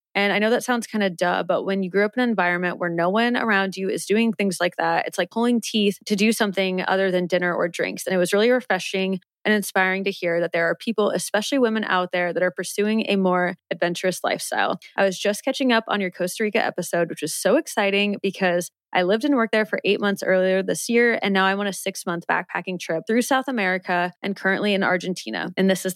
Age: 20-39